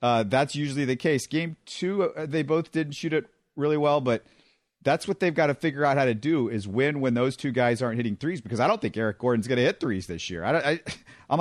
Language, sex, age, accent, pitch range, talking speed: English, male, 40-59, American, 115-150 Hz, 245 wpm